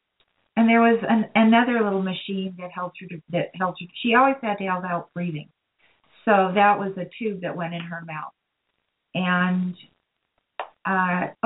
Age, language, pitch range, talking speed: 40-59, English, 165-195 Hz, 175 wpm